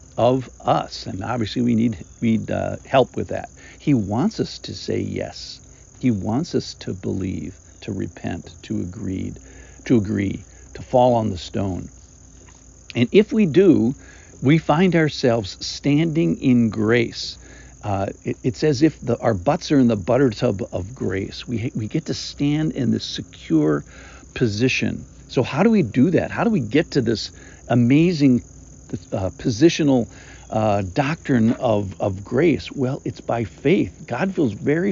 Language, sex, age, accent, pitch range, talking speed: English, male, 50-69, American, 105-150 Hz, 160 wpm